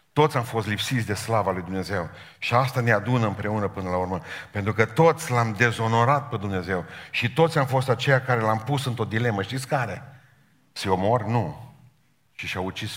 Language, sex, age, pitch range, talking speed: Romanian, male, 50-69, 100-125 Hz, 190 wpm